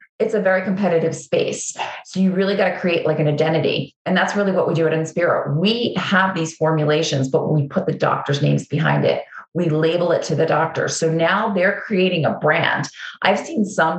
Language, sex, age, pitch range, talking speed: English, female, 30-49, 155-180 Hz, 215 wpm